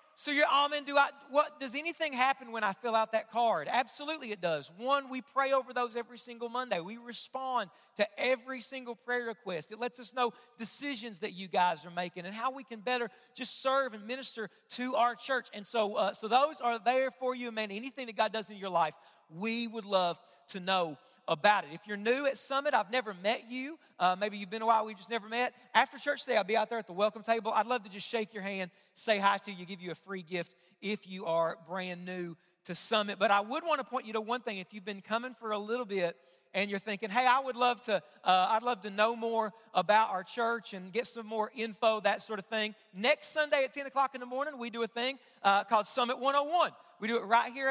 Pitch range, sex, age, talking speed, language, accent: 200-255 Hz, male, 40-59, 255 wpm, English, American